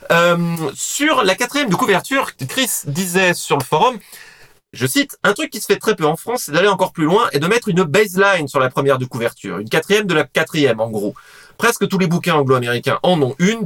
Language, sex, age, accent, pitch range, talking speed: French, male, 30-49, French, 135-185 Hz, 230 wpm